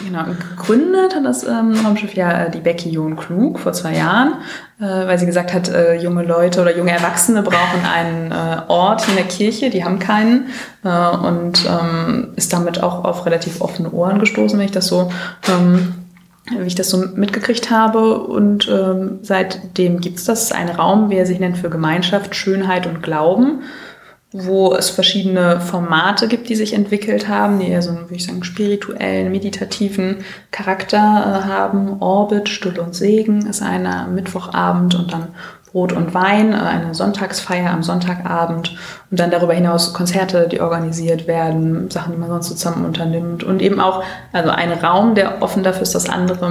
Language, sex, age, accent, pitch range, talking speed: German, female, 20-39, German, 170-200 Hz, 175 wpm